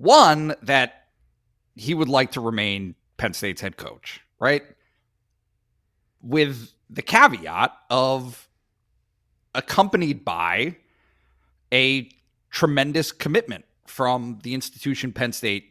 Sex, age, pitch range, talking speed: male, 40-59, 105-150 Hz, 100 wpm